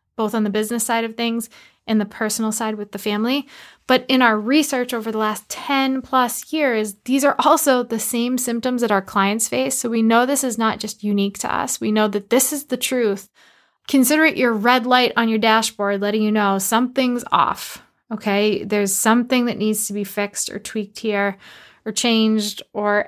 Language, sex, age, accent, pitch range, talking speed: English, female, 20-39, American, 210-250 Hz, 205 wpm